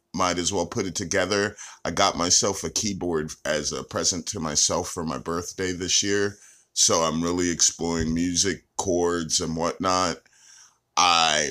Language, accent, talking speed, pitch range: English, American, 155 wpm, 85-110 Hz